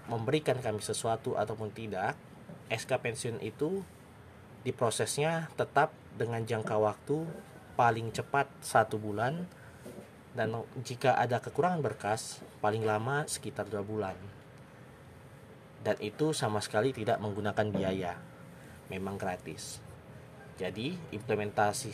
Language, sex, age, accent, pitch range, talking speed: Indonesian, male, 20-39, native, 105-135 Hz, 105 wpm